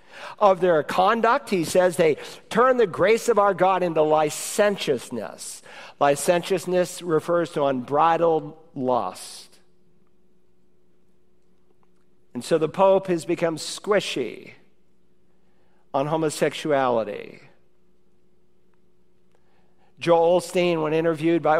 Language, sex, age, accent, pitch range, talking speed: English, male, 50-69, American, 150-185 Hz, 90 wpm